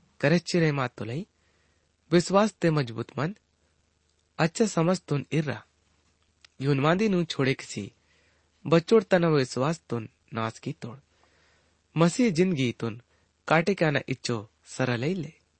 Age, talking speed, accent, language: 30-49, 110 wpm, Indian, English